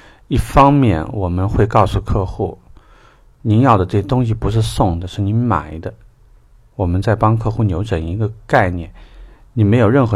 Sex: male